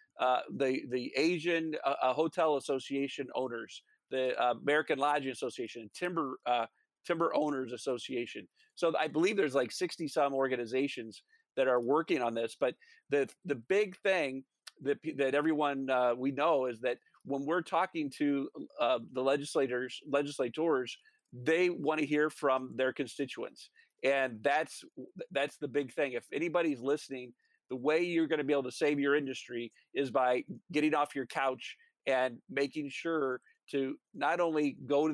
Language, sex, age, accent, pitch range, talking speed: English, male, 40-59, American, 135-165 Hz, 160 wpm